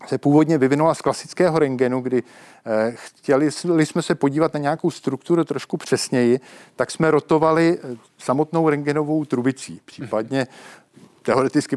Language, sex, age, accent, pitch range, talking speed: Czech, male, 50-69, native, 135-165 Hz, 120 wpm